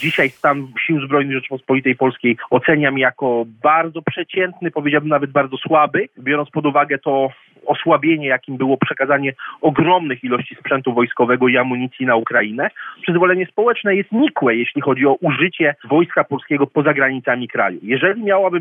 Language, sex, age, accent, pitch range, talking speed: Polish, male, 40-59, native, 130-155 Hz, 145 wpm